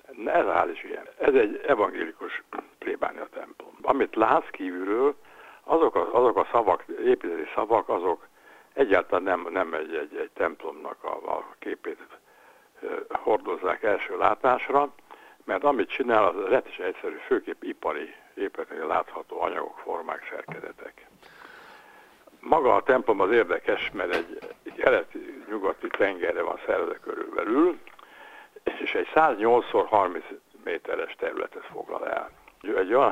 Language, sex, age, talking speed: Hungarian, male, 60-79, 125 wpm